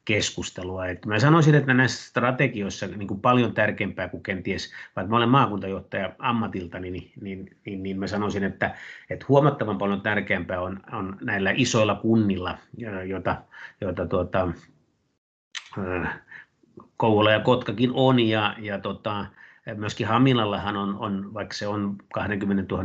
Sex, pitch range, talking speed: male, 95-110 Hz, 130 wpm